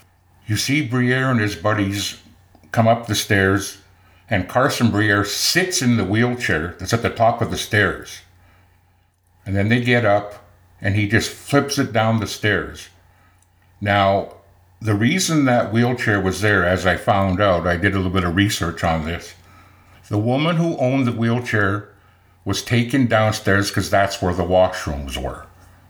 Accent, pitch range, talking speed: American, 90-115 Hz, 165 wpm